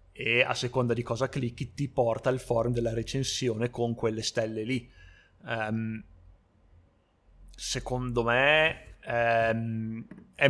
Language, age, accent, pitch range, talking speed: Italian, 30-49, native, 115-135 Hz, 110 wpm